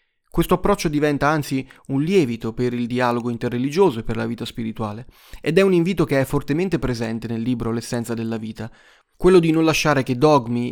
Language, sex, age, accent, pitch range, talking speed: Italian, male, 30-49, native, 120-155 Hz, 190 wpm